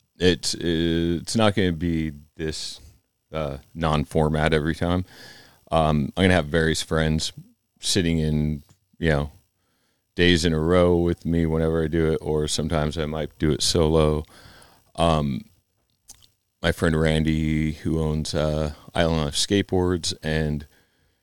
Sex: male